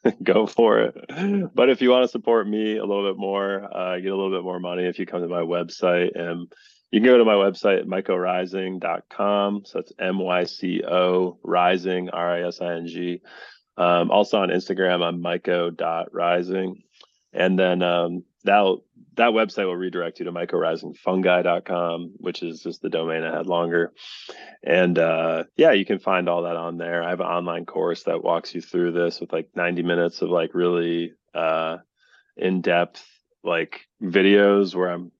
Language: English